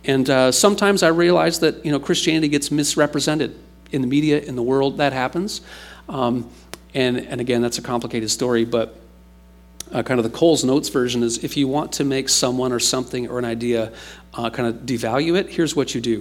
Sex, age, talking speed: male, 40-59, 205 wpm